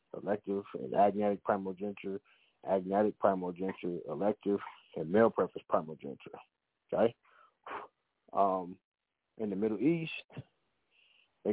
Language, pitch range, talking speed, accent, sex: English, 100-140 Hz, 90 wpm, American, male